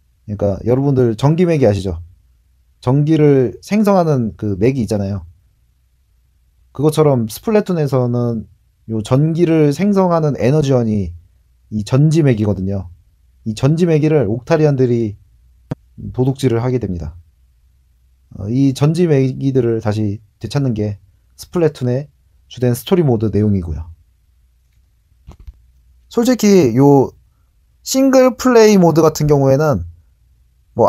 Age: 30-49